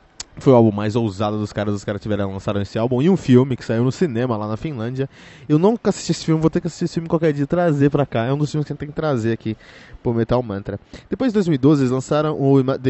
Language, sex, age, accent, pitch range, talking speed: Portuguese, male, 20-39, Brazilian, 110-145 Hz, 285 wpm